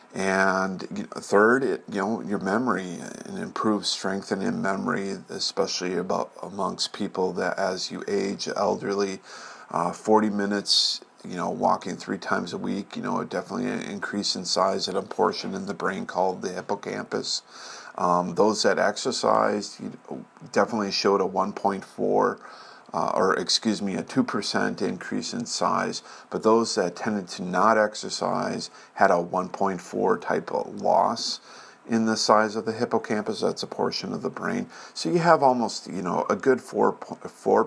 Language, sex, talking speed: English, male, 155 wpm